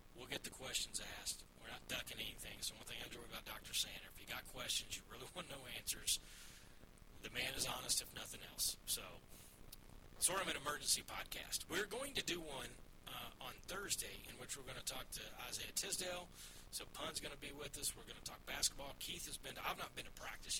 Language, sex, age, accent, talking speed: English, male, 40-59, American, 225 wpm